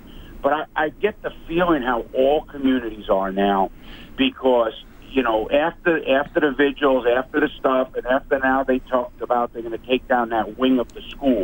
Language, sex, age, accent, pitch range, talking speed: English, male, 50-69, American, 115-135 Hz, 195 wpm